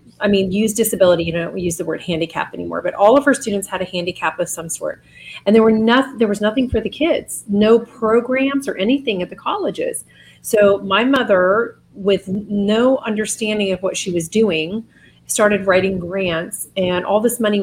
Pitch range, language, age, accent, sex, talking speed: 180-215 Hz, English, 30-49, American, female, 185 wpm